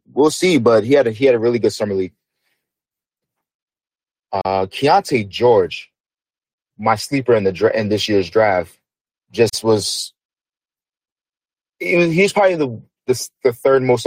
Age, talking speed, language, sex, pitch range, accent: 30-49, 140 wpm, English, male, 105-135 Hz, American